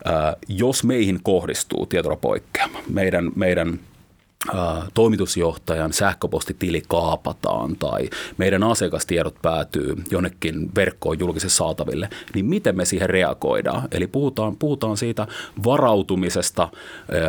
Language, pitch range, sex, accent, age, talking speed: Finnish, 85-105 Hz, male, native, 30-49, 95 wpm